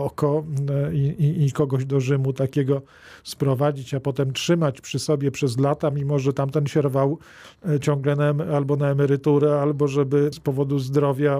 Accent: native